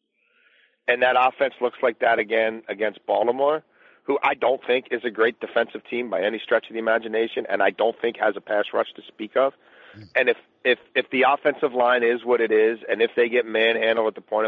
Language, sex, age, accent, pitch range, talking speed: English, male, 40-59, American, 115-140 Hz, 225 wpm